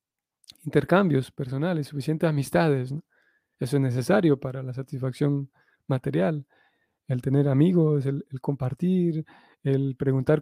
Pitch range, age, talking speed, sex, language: 135-155 Hz, 30-49, 110 wpm, male, Spanish